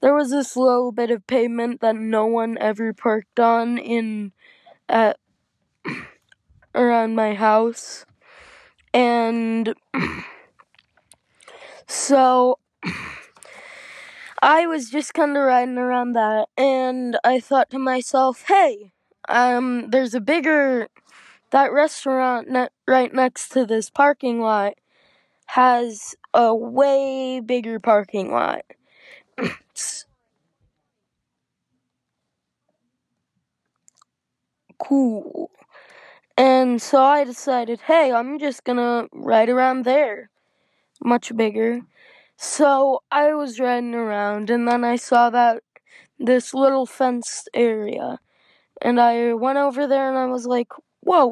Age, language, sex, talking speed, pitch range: 20-39, English, female, 110 wpm, 235-270 Hz